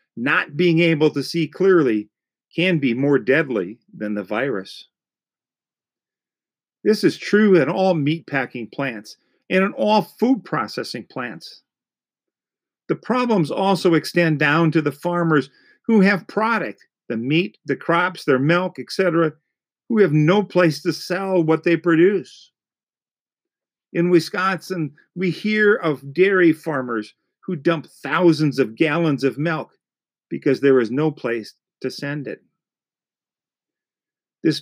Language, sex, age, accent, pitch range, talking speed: English, male, 50-69, American, 145-180 Hz, 130 wpm